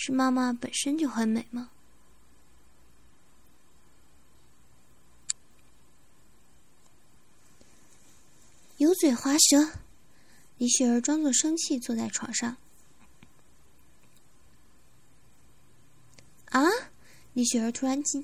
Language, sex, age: Chinese, female, 20-39